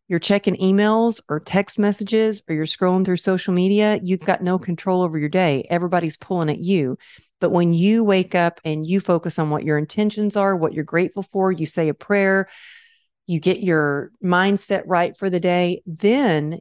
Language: English